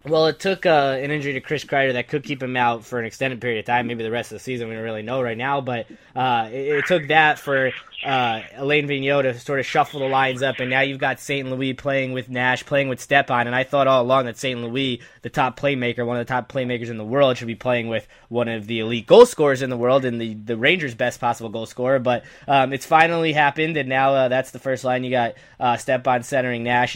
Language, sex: English, male